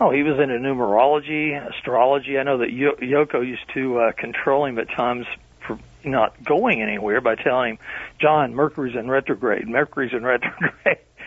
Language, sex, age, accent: English, male, 40-59, American